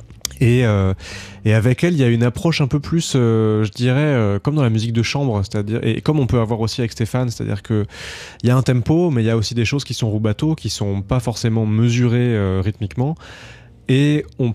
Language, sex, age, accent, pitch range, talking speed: French, male, 20-39, French, 105-130 Hz, 240 wpm